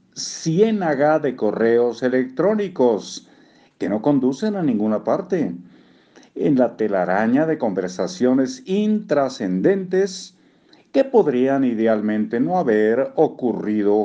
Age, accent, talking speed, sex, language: 50-69, Mexican, 95 wpm, male, Spanish